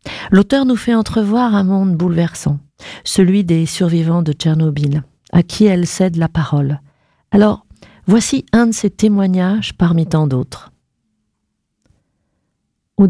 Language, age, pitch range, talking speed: French, 40-59, 160-210 Hz, 130 wpm